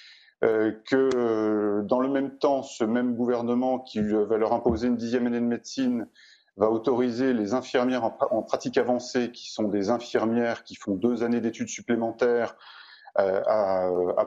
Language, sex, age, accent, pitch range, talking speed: French, male, 30-49, French, 110-135 Hz, 170 wpm